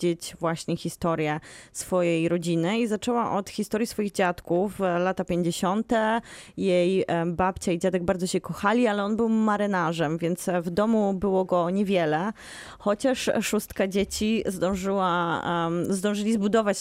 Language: Polish